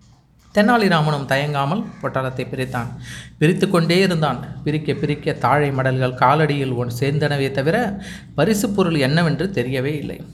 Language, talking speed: Tamil, 115 wpm